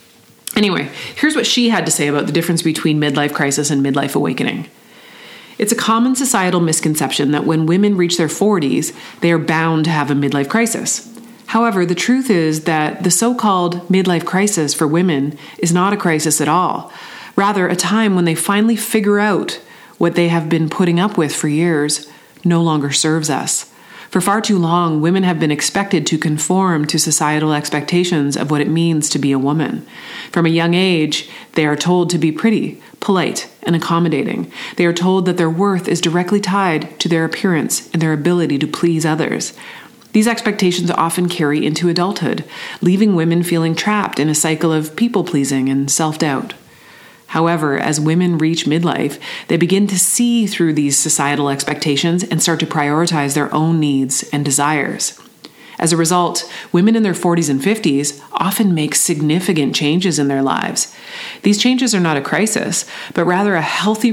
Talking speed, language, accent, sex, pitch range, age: 180 wpm, English, American, female, 155-190 Hz, 30-49